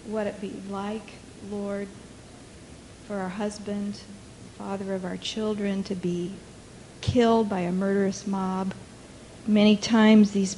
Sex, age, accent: female, 50-69, American